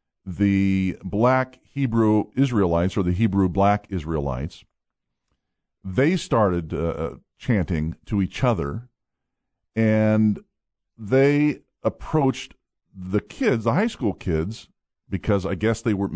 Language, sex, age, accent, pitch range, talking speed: English, male, 50-69, American, 85-110 Hz, 110 wpm